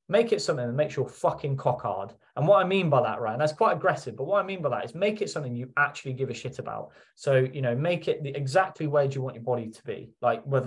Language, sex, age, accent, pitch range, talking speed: English, male, 20-39, British, 120-150 Hz, 285 wpm